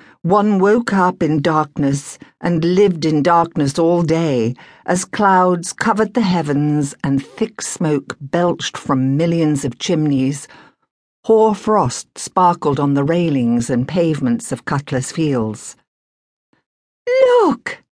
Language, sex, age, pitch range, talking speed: English, female, 60-79, 130-215 Hz, 120 wpm